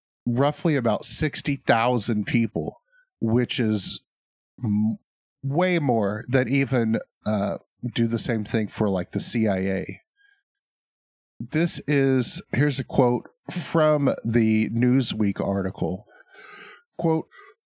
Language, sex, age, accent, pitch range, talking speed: English, male, 50-69, American, 115-150 Hz, 100 wpm